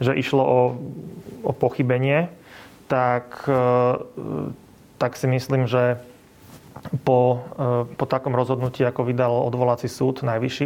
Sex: male